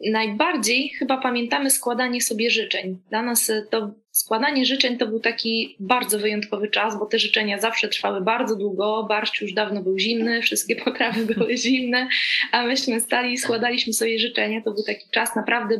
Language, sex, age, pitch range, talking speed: Polish, female, 20-39, 210-255 Hz, 165 wpm